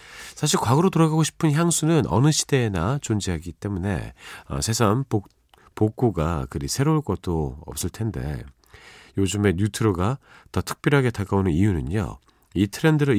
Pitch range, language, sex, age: 90-140 Hz, Korean, male, 40-59